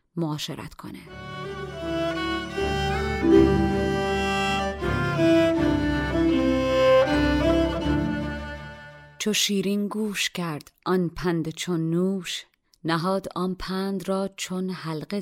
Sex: female